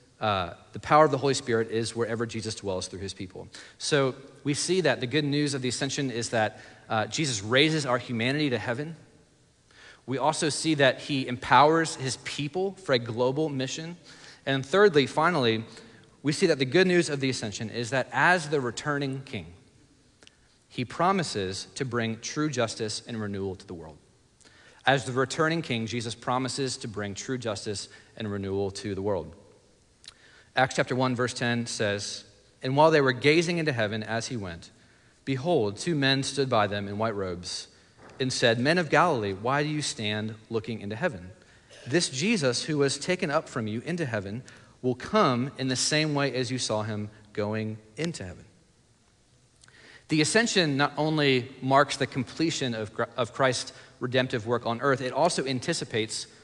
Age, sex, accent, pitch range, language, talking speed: 30-49, male, American, 110-145 Hz, English, 175 wpm